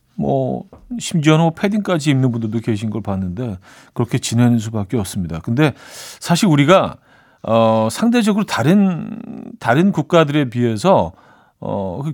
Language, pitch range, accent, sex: Korean, 115-165 Hz, native, male